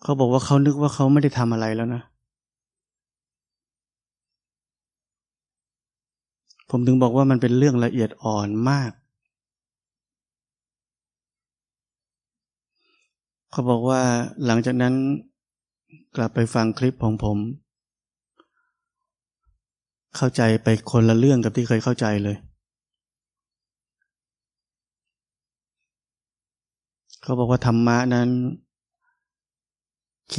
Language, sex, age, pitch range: Thai, male, 20-39, 110-130 Hz